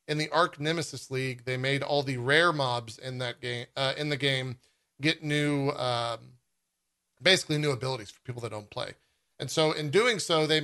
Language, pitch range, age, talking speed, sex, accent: English, 120-145 Hz, 40-59, 195 wpm, male, American